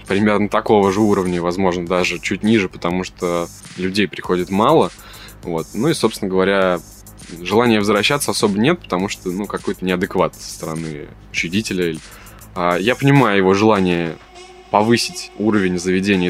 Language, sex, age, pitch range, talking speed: Russian, male, 20-39, 90-105 Hz, 135 wpm